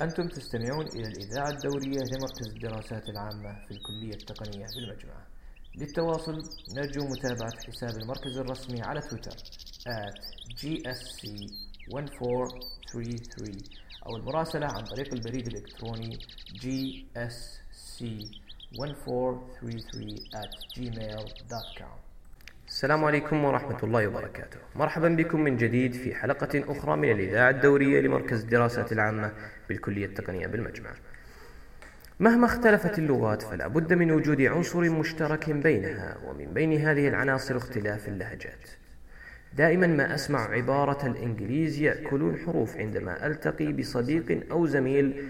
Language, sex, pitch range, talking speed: English, male, 105-140 Hz, 105 wpm